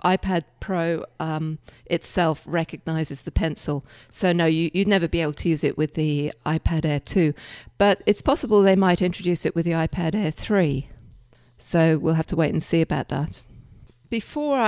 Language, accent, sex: English, British, female